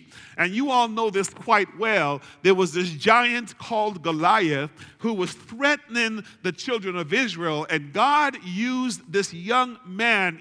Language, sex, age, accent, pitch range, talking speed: English, male, 50-69, American, 180-245 Hz, 150 wpm